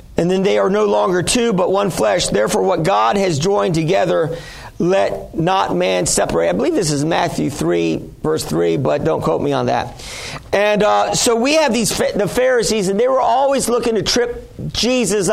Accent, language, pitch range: American, English, 185-230 Hz